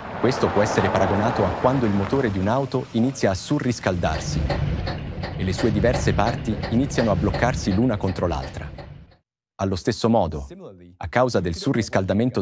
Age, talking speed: 30-49, 150 wpm